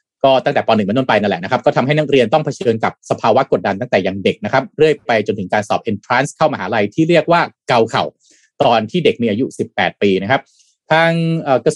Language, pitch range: Thai, 115-165 Hz